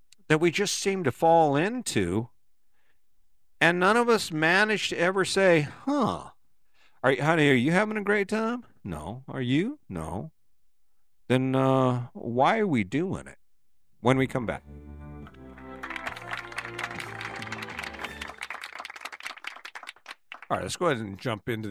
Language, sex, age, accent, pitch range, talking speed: English, male, 50-69, American, 105-145 Hz, 125 wpm